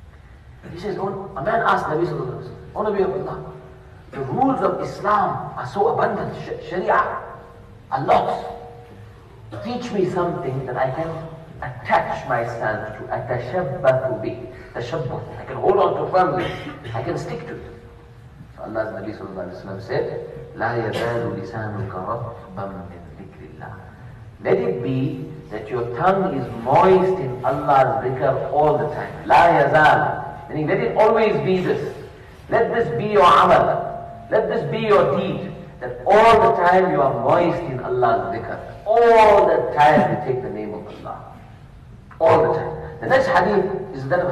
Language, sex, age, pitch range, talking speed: English, male, 40-59, 120-185 Hz, 155 wpm